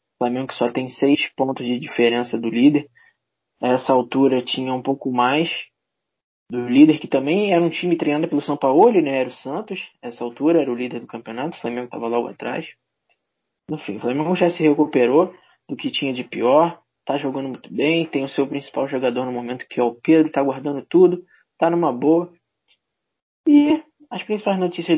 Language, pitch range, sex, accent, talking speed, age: Portuguese, 125-175 Hz, male, Brazilian, 195 wpm, 20-39